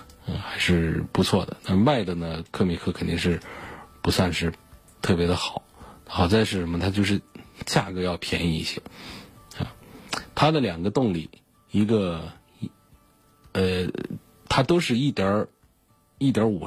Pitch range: 85-105 Hz